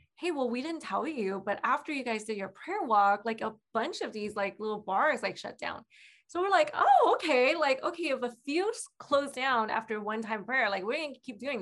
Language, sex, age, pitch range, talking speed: English, female, 20-39, 200-250 Hz, 245 wpm